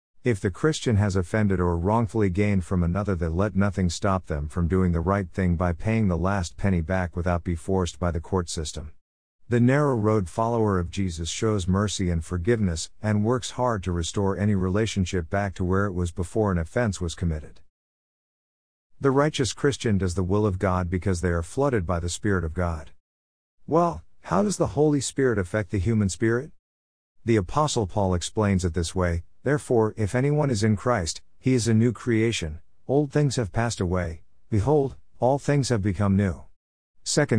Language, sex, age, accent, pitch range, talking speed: English, male, 50-69, American, 85-115 Hz, 190 wpm